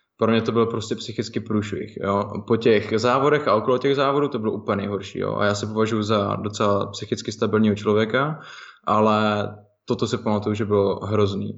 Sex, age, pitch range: male, 20-39, 100-110 Hz